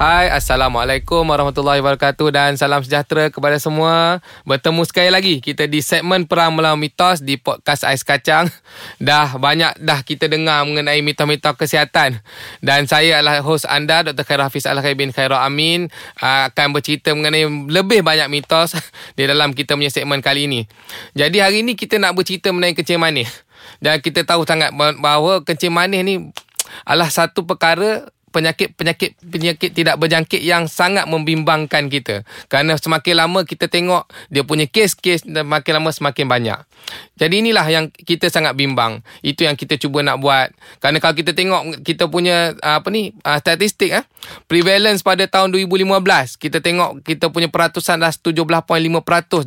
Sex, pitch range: male, 145-180 Hz